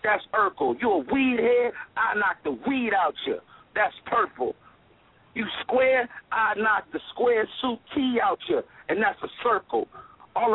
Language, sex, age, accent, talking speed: English, male, 50-69, American, 165 wpm